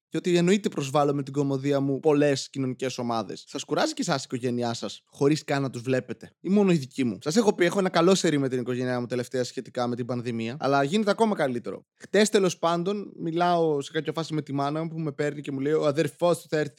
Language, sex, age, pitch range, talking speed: Greek, male, 20-39, 135-175 Hz, 250 wpm